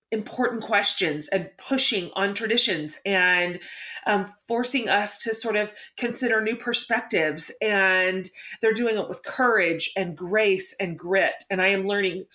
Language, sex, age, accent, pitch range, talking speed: English, female, 30-49, American, 175-225 Hz, 145 wpm